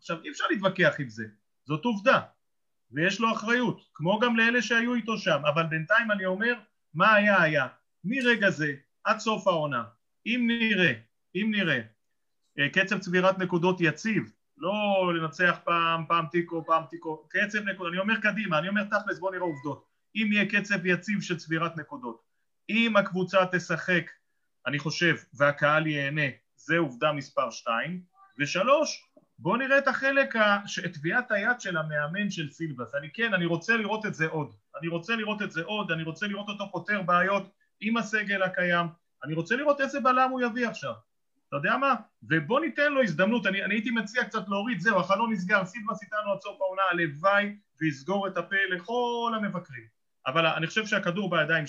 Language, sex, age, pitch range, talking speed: Hebrew, male, 30-49, 160-215 Hz, 170 wpm